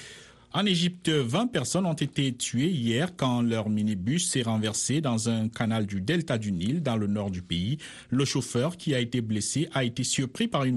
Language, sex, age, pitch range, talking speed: Italian, male, 50-69, 110-145 Hz, 200 wpm